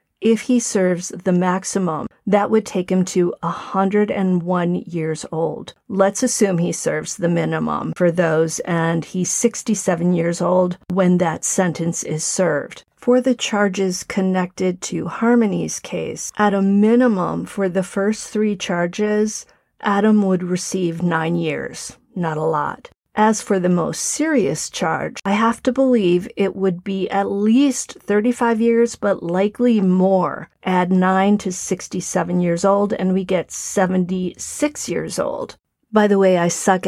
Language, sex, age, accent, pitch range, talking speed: English, female, 40-59, American, 175-210 Hz, 150 wpm